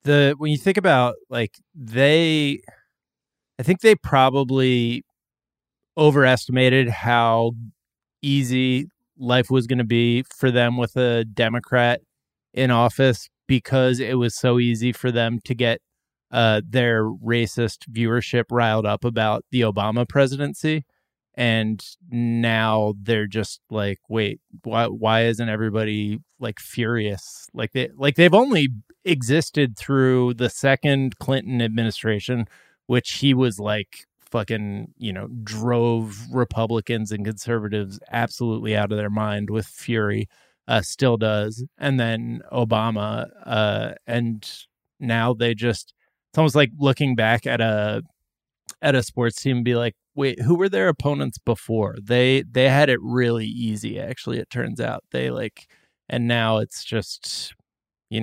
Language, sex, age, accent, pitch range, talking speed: English, male, 20-39, American, 110-130 Hz, 140 wpm